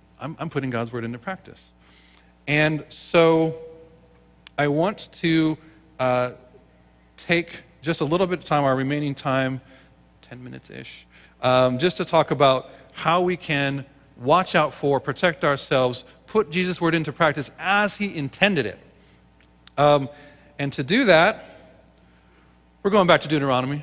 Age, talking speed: 40-59, 140 wpm